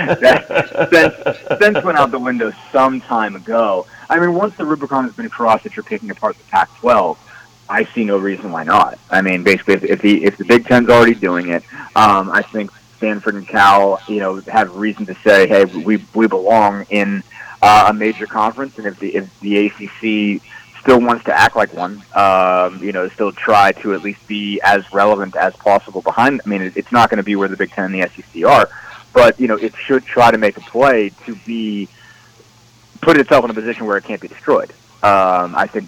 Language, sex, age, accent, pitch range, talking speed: English, male, 30-49, American, 95-115 Hz, 220 wpm